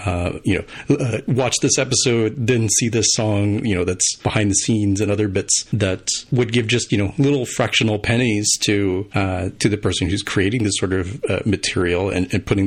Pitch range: 95-120 Hz